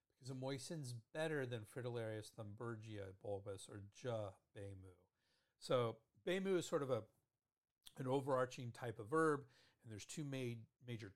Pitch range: 105-135 Hz